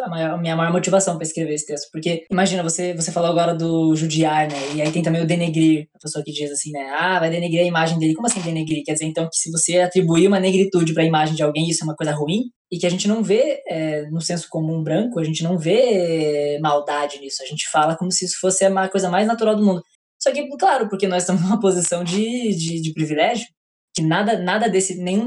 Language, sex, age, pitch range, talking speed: Portuguese, female, 10-29, 160-190 Hz, 250 wpm